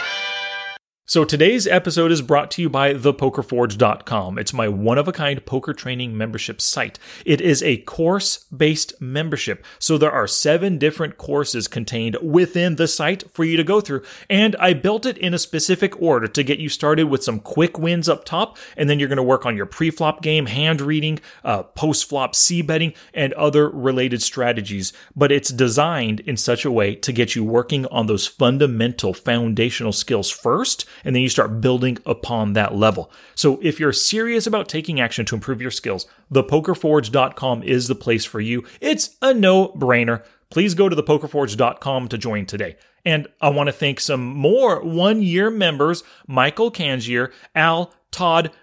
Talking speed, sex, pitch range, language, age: 175 wpm, male, 125-170 Hz, English, 30-49